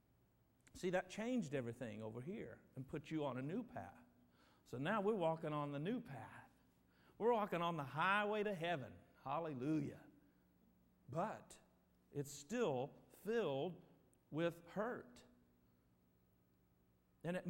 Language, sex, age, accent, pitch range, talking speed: English, male, 50-69, American, 115-185 Hz, 125 wpm